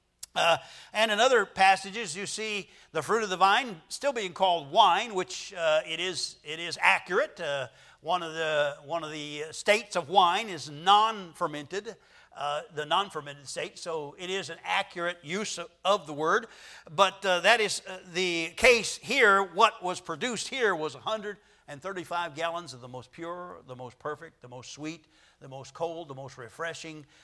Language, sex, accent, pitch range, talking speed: English, male, American, 145-195 Hz, 175 wpm